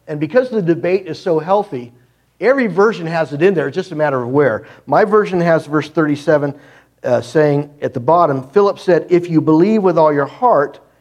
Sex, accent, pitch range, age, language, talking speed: male, American, 130-190 Hz, 50-69, English, 205 wpm